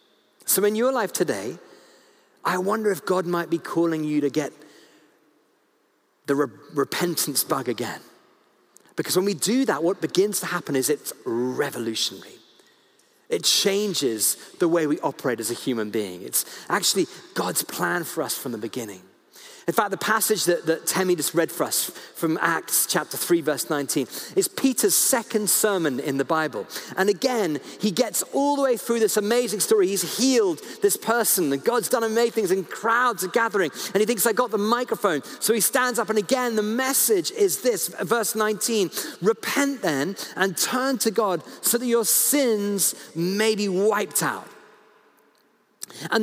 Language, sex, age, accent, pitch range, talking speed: English, male, 40-59, British, 175-235 Hz, 170 wpm